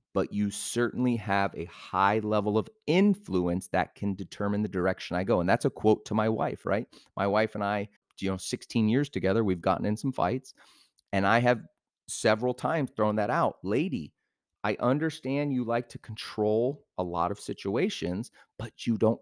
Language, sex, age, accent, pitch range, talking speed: English, male, 30-49, American, 95-115 Hz, 185 wpm